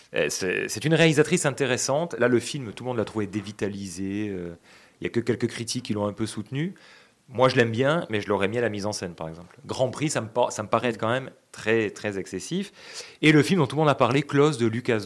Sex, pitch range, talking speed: male, 105-140 Hz, 260 wpm